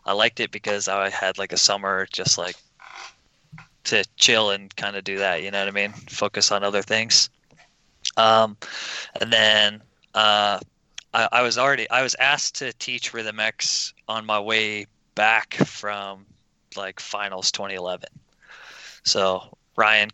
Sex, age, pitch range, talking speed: male, 20-39, 100-110 Hz, 160 wpm